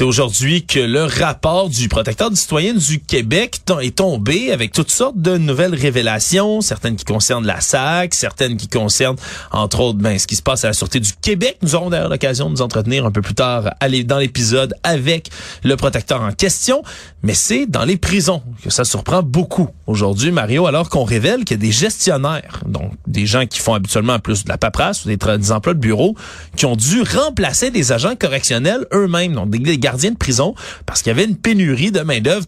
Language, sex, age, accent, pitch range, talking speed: French, male, 30-49, Canadian, 115-175 Hz, 210 wpm